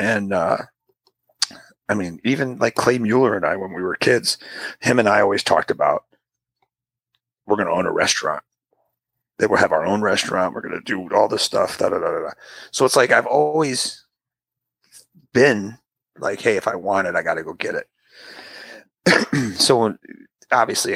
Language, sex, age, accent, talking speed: English, male, 30-49, American, 170 wpm